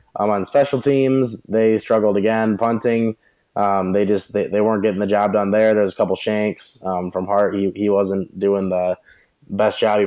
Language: English